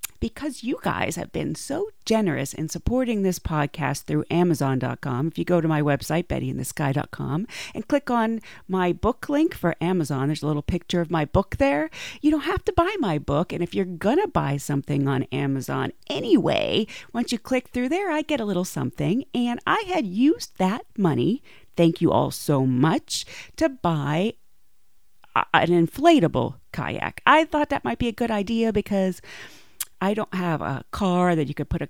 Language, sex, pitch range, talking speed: English, female, 150-240 Hz, 185 wpm